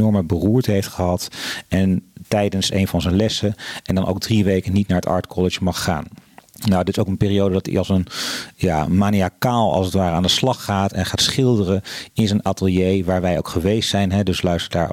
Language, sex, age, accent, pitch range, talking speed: Dutch, male, 40-59, Dutch, 90-105 Hz, 225 wpm